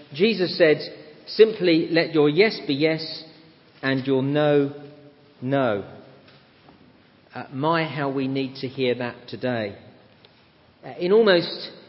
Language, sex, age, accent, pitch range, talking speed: English, male, 40-59, British, 130-165 Hz, 120 wpm